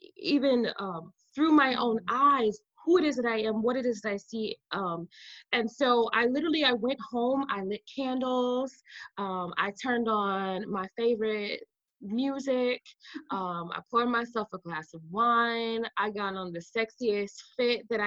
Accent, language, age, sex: American, English, 20-39, female